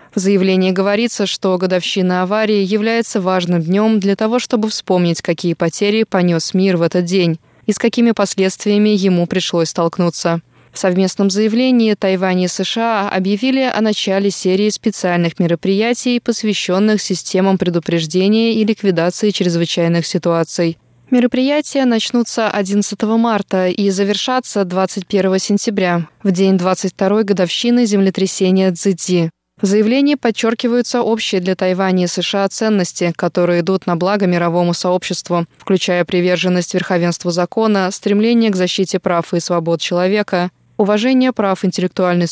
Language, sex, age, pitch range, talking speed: Russian, female, 20-39, 180-215 Hz, 125 wpm